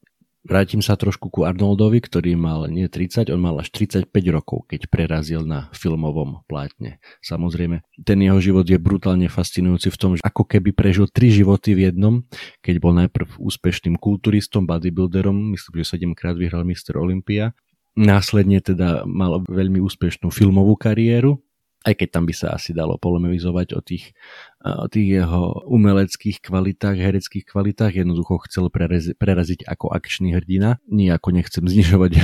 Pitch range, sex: 85-100 Hz, male